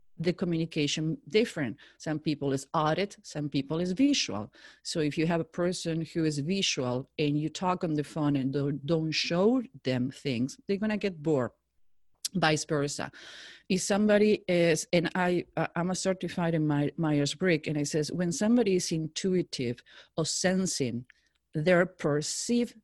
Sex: female